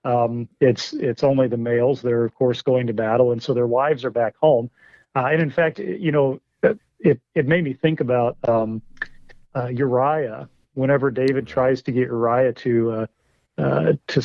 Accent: American